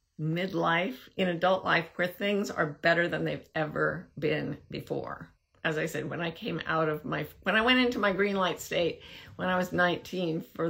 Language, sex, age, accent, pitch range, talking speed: English, female, 50-69, American, 165-200 Hz, 195 wpm